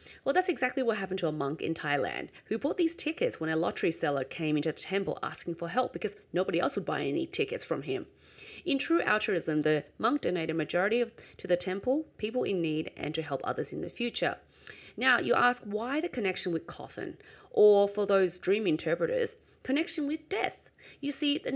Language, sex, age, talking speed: English, female, 30-49, 205 wpm